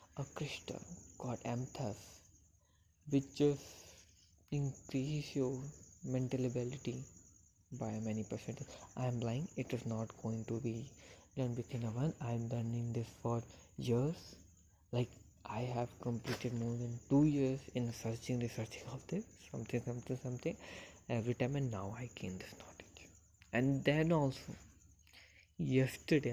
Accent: Indian